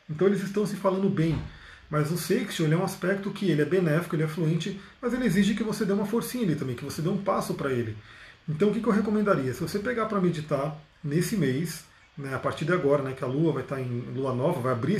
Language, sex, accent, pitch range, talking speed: Portuguese, male, Brazilian, 140-195 Hz, 255 wpm